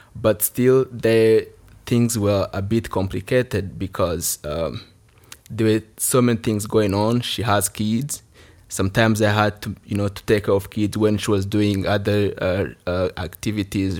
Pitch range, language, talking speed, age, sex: 100-115 Hz, English, 165 wpm, 20-39, male